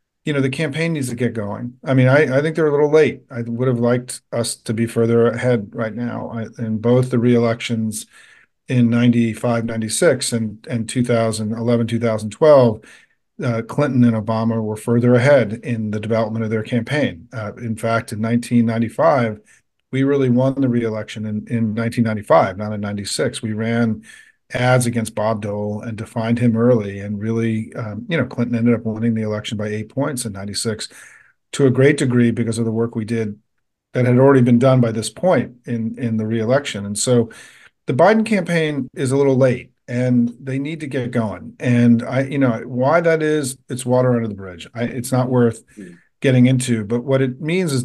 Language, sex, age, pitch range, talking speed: English, male, 40-59, 110-130 Hz, 190 wpm